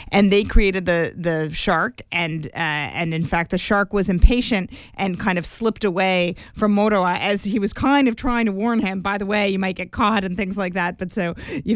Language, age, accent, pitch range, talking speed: English, 30-49, American, 170-205 Hz, 230 wpm